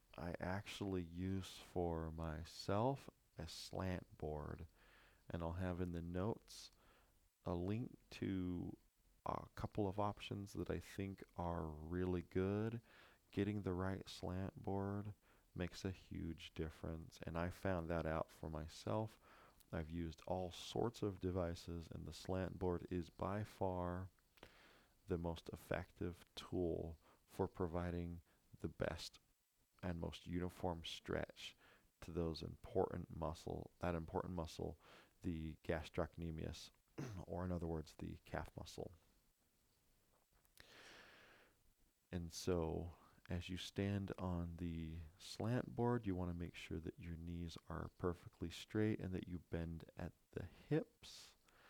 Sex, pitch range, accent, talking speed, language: male, 85-95 Hz, American, 130 wpm, English